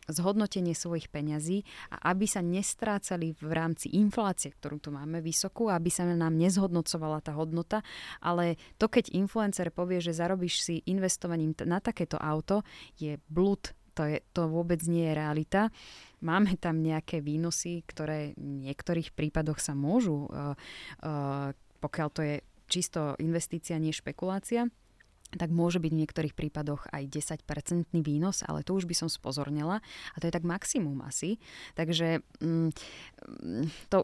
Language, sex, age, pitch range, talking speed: Slovak, female, 20-39, 155-185 Hz, 145 wpm